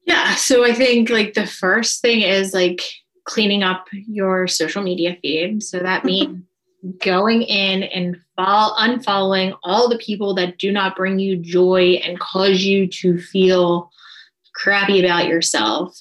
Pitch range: 185-215 Hz